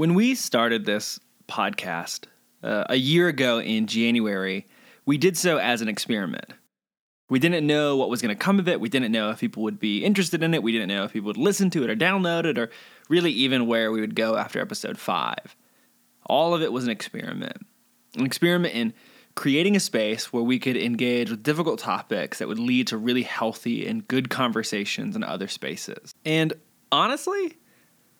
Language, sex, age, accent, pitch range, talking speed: English, male, 20-39, American, 120-175 Hz, 195 wpm